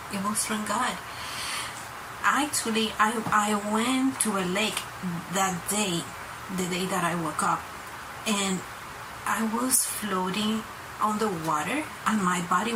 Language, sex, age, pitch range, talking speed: English, female, 30-49, 185-225 Hz, 135 wpm